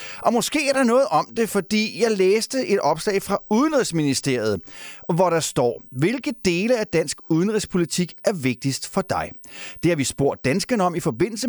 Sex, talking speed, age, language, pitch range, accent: male, 180 wpm, 30-49, Danish, 155-215 Hz, native